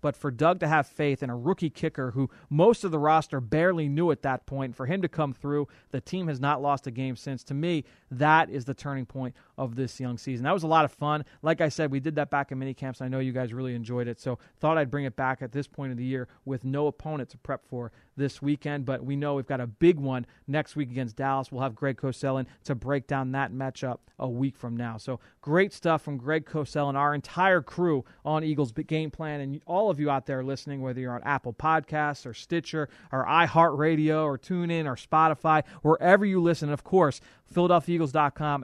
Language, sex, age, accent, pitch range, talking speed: English, male, 30-49, American, 130-155 Hz, 240 wpm